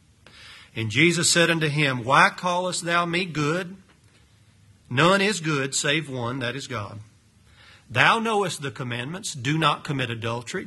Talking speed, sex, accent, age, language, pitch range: 145 wpm, male, American, 40-59, English, 110-160 Hz